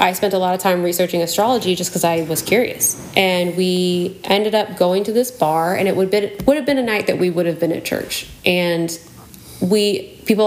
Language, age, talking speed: English, 30-49, 230 wpm